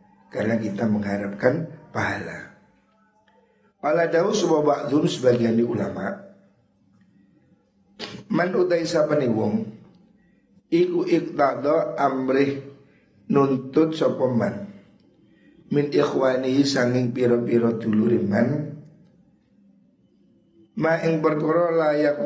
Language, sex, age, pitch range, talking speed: Indonesian, male, 50-69, 120-165 Hz, 75 wpm